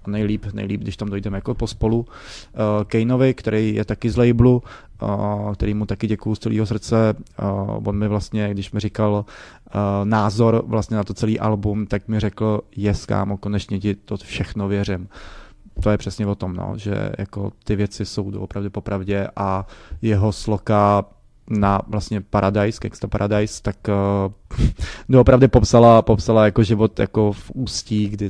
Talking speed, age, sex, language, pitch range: 160 wpm, 20-39, male, Czech, 100-110 Hz